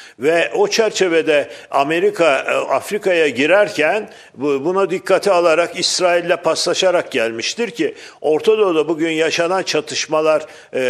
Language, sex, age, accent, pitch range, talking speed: Turkish, male, 50-69, native, 150-205 Hz, 95 wpm